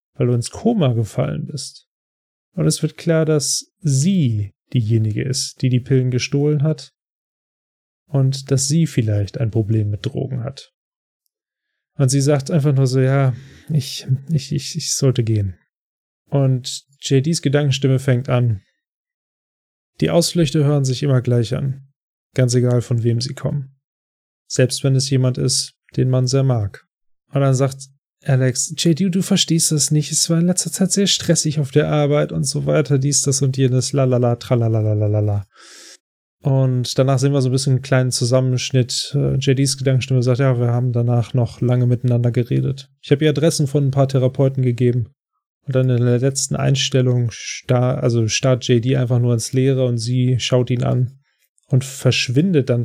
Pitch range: 125-145 Hz